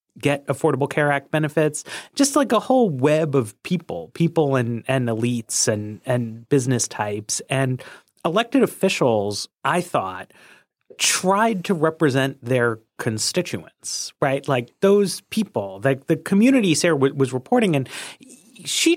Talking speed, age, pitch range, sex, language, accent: 135 wpm, 30-49, 120-175 Hz, male, English, American